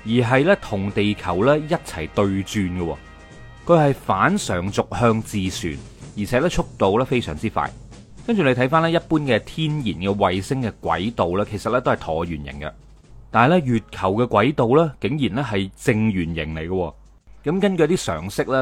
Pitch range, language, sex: 95-135 Hz, Chinese, male